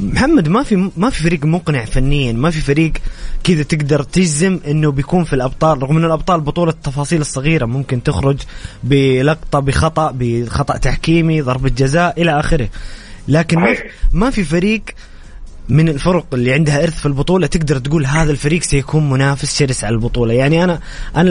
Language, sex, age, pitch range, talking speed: English, male, 20-39, 130-170 Hz, 170 wpm